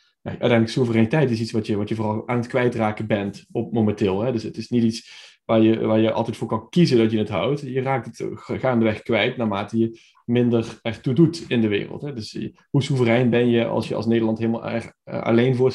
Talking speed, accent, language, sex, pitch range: 230 wpm, Dutch, Dutch, male, 110-130 Hz